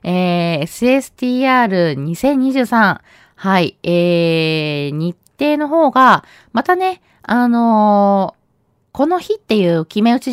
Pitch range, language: 175-260 Hz, Japanese